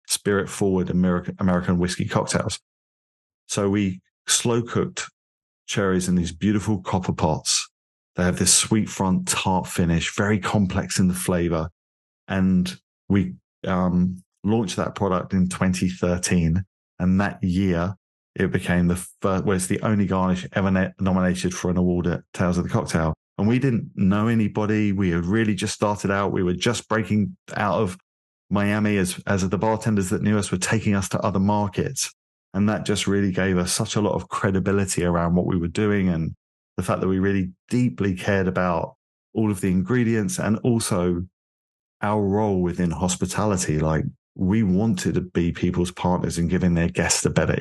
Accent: British